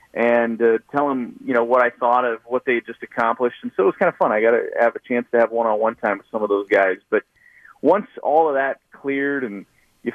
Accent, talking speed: American, 265 wpm